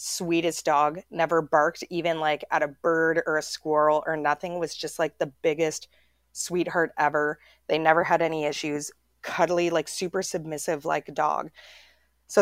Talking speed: 165 wpm